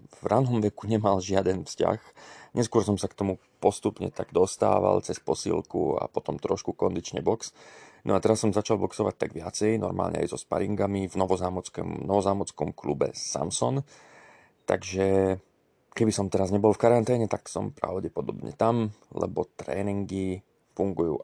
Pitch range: 95-110 Hz